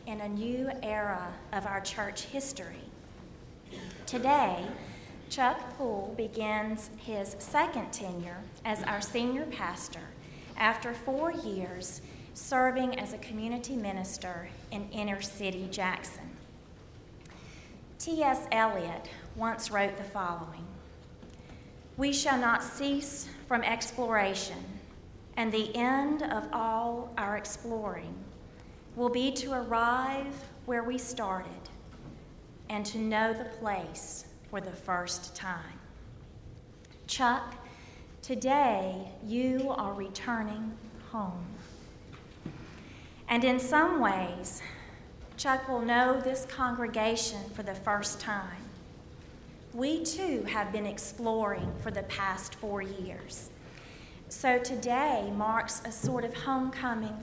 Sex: female